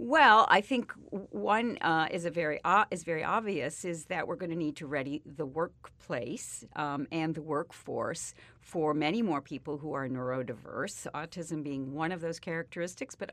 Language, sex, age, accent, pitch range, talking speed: English, female, 50-69, American, 145-175 Hz, 180 wpm